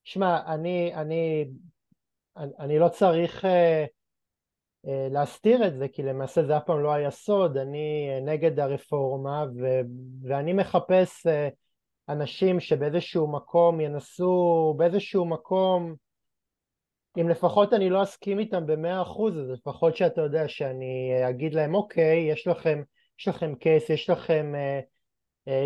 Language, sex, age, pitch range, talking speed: Hebrew, male, 20-39, 140-175 Hz, 135 wpm